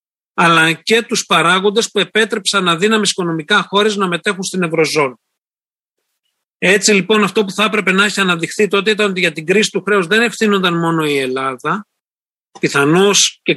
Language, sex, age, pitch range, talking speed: Greek, male, 40-59, 170-215 Hz, 170 wpm